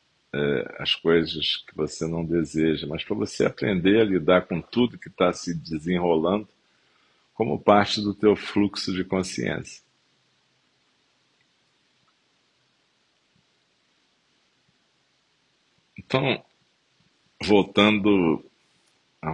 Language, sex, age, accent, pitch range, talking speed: Portuguese, male, 50-69, Brazilian, 80-100 Hz, 85 wpm